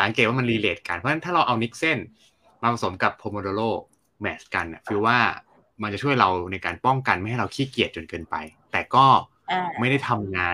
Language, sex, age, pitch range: Thai, male, 20-39, 95-125 Hz